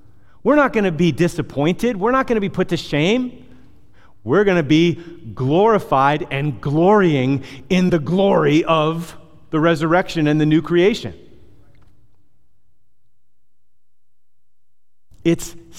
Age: 30-49